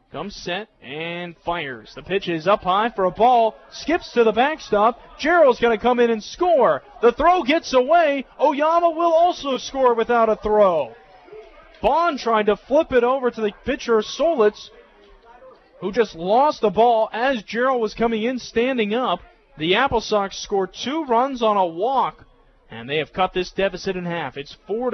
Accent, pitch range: American, 145-220 Hz